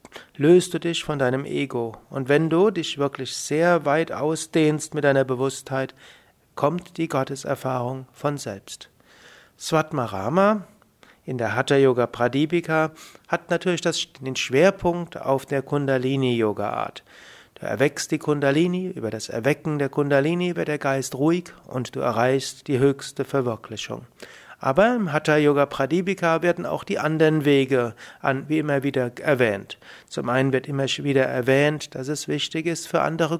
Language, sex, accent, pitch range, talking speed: German, male, German, 130-160 Hz, 145 wpm